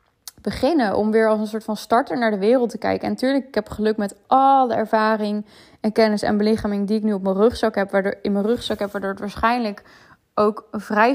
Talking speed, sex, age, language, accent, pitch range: 230 wpm, female, 20-39, Dutch, Dutch, 210-235 Hz